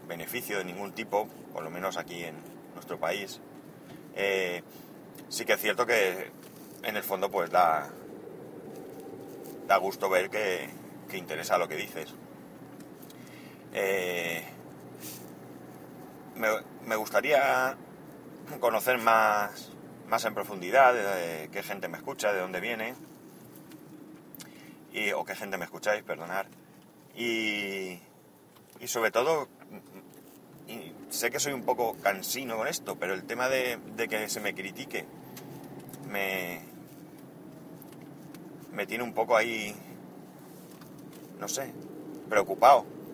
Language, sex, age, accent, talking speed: Spanish, male, 30-49, Spanish, 120 wpm